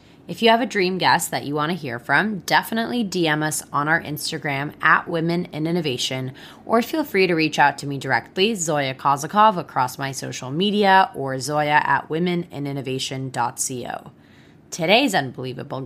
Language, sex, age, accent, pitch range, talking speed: English, female, 20-39, American, 135-180 Hz, 165 wpm